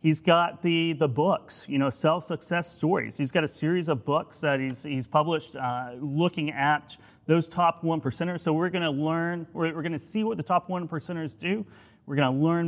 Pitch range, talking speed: 145-175 Hz, 220 wpm